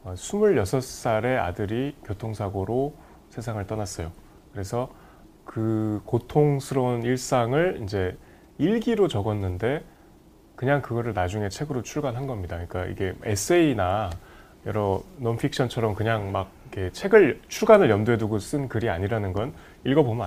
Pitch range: 95-135 Hz